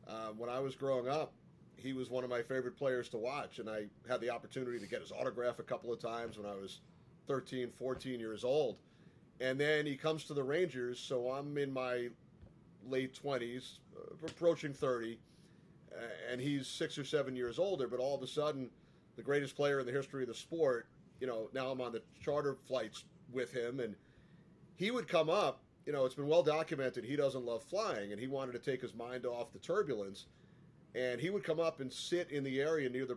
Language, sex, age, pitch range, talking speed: English, male, 30-49, 120-145 Hz, 215 wpm